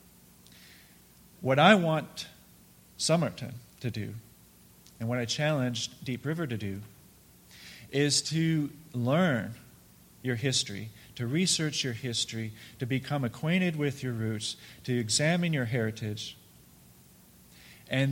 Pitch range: 105-135 Hz